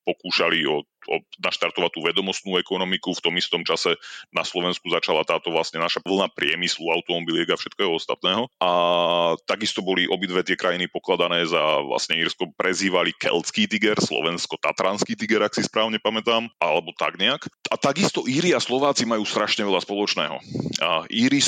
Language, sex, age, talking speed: Slovak, male, 30-49, 150 wpm